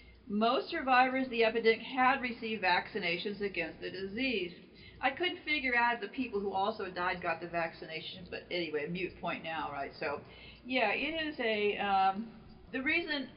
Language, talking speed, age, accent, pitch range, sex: English, 170 wpm, 50-69, American, 200-255 Hz, female